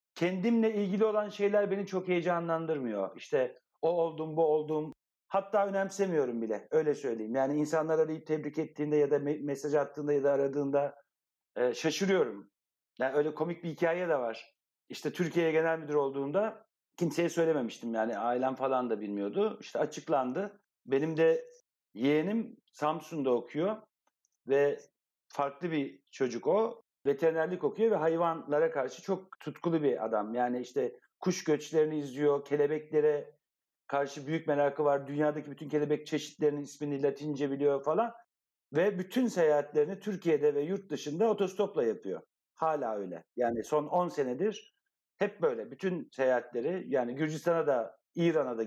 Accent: native